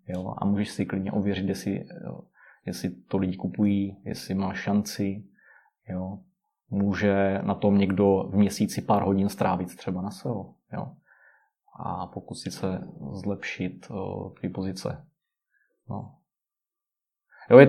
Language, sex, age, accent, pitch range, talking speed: Czech, male, 20-39, native, 100-120 Hz, 110 wpm